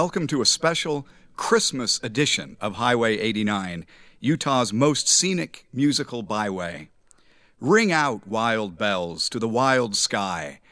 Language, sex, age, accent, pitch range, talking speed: English, male, 50-69, American, 110-155 Hz, 125 wpm